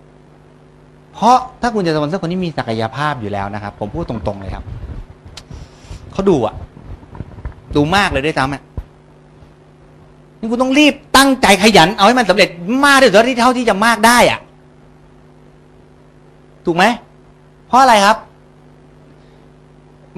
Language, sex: Thai, male